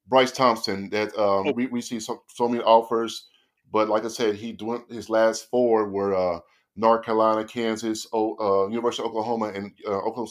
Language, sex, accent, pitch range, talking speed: English, male, American, 105-125 Hz, 190 wpm